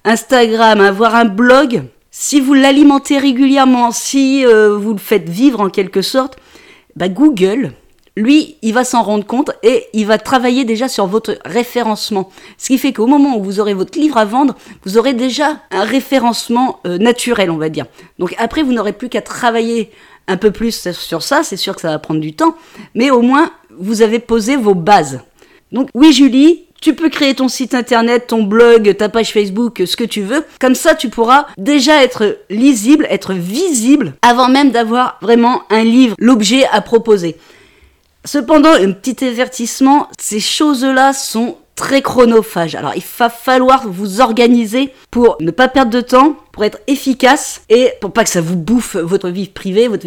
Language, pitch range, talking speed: French, 200-265 Hz, 185 wpm